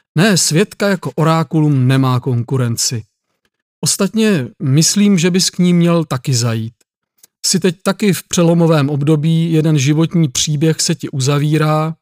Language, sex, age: Czech, male, 40-59